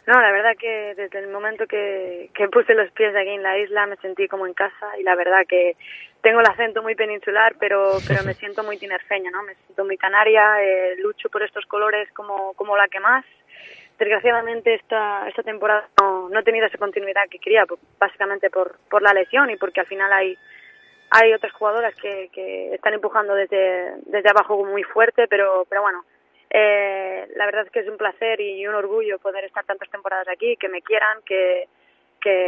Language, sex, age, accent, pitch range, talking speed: Spanish, female, 20-39, Spanish, 190-210 Hz, 205 wpm